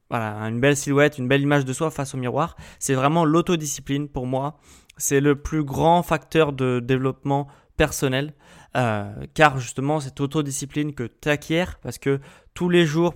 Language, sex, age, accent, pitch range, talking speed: French, male, 20-39, French, 130-155 Hz, 170 wpm